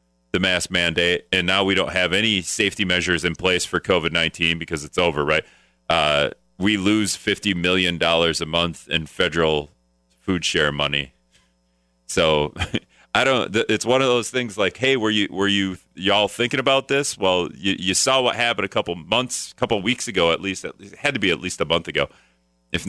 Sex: male